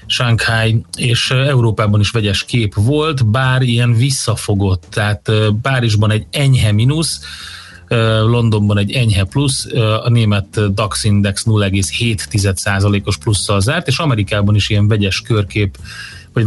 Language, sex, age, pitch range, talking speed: Hungarian, male, 30-49, 105-120 Hz, 120 wpm